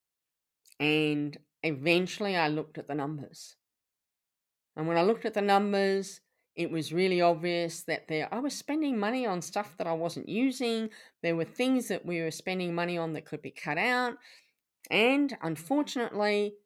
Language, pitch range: English, 160-215 Hz